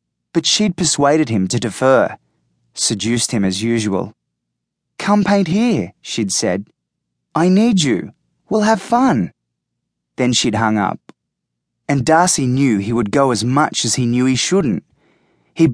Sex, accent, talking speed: male, Australian, 150 wpm